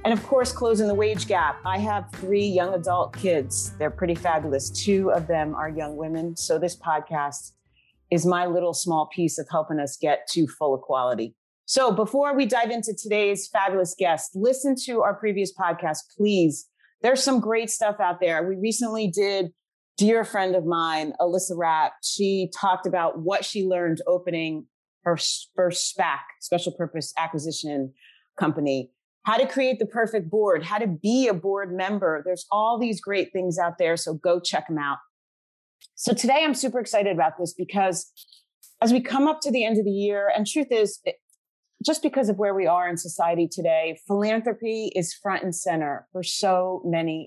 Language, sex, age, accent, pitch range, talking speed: English, female, 30-49, American, 165-215 Hz, 180 wpm